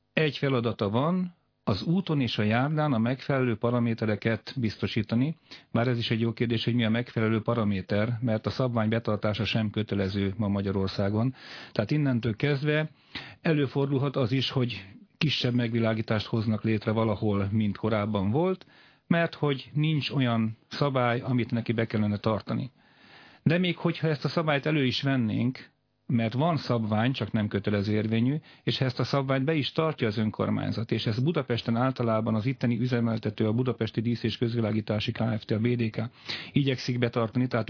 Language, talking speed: Hungarian, 160 wpm